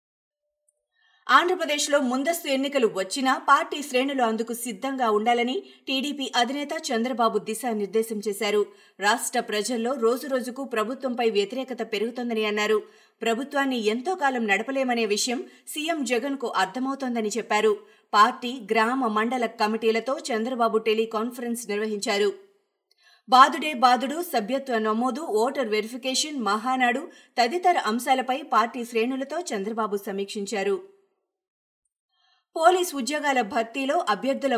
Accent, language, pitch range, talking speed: native, Telugu, 220-270 Hz, 95 wpm